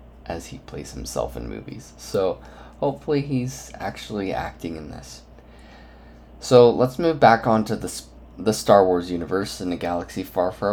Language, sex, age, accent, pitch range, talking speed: English, male, 20-39, American, 75-105 Hz, 160 wpm